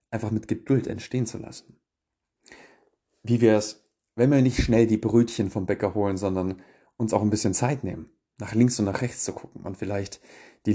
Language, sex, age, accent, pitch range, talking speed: German, male, 30-49, German, 100-115 Hz, 195 wpm